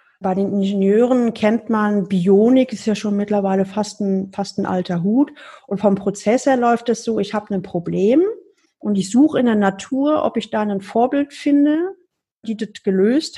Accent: German